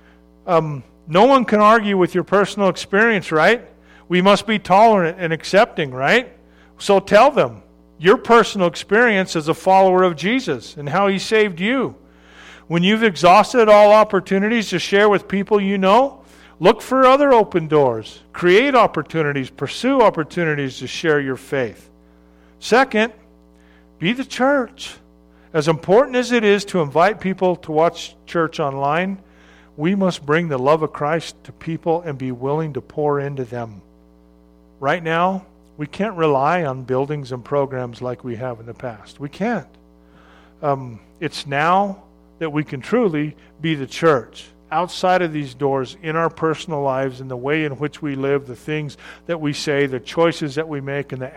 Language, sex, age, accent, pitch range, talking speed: English, male, 50-69, American, 130-185 Hz, 165 wpm